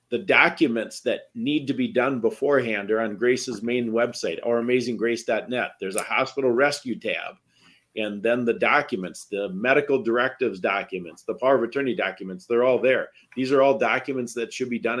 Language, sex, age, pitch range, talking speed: English, male, 50-69, 120-140 Hz, 175 wpm